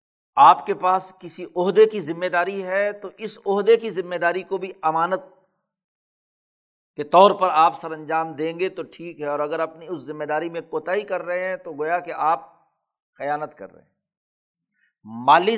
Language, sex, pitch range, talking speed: Urdu, male, 155-205 Hz, 190 wpm